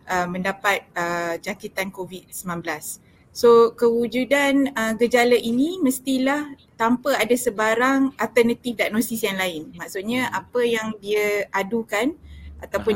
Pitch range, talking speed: 195-245 Hz, 110 wpm